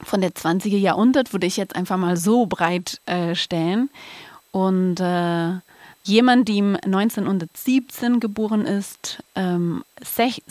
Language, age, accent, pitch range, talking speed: German, 30-49, German, 175-205 Hz, 125 wpm